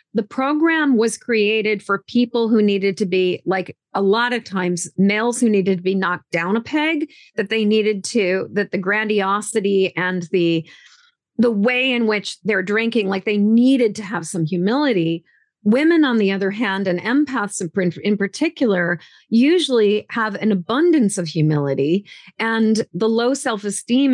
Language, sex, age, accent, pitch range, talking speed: English, female, 40-59, American, 185-225 Hz, 160 wpm